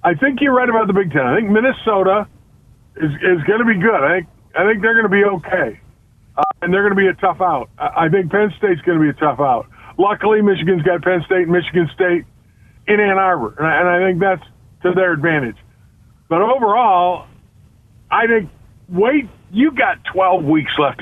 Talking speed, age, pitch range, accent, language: 215 wpm, 50-69, 145-200 Hz, American, English